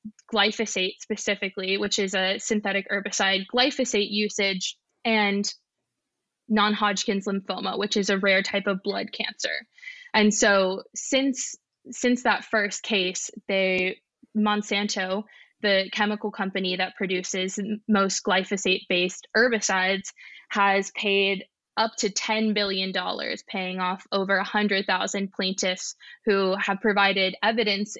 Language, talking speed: English, 115 wpm